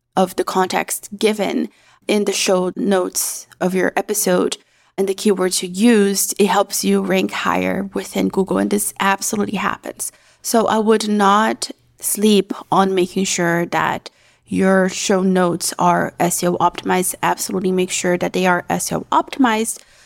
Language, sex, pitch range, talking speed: English, female, 180-205 Hz, 150 wpm